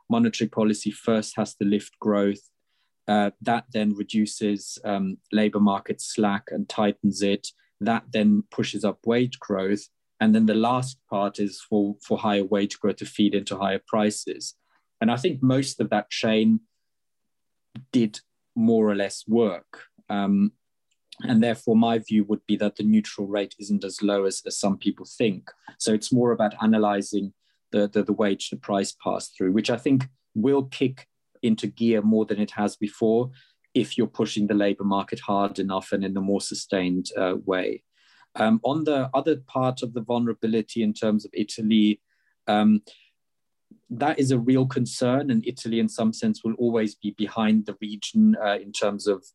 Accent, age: British, 20-39